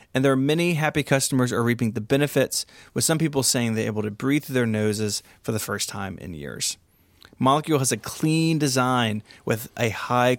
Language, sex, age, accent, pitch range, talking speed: English, male, 30-49, American, 115-150 Hz, 200 wpm